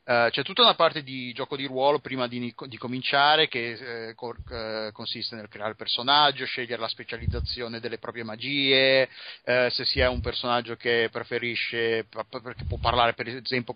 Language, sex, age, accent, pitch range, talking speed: Italian, male, 30-49, native, 120-150 Hz, 175 wpm